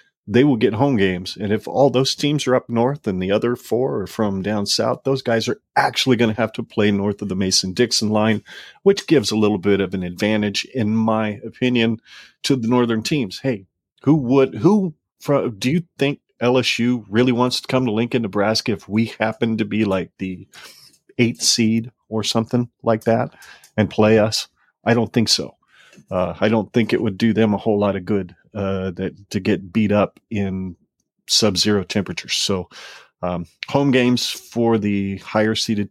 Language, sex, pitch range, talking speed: English, male, 100-125 Hz, 195 wpm